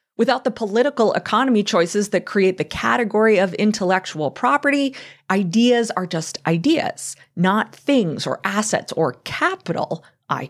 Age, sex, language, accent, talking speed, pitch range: 30-49, female, English, American, 130 wpm, 165-235 Hz